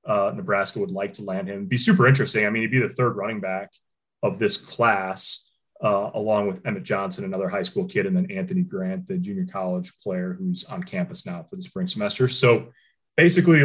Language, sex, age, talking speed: English, male, 20-39, 210 wpm